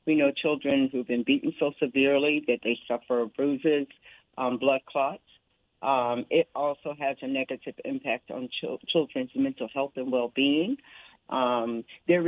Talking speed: 140 wpm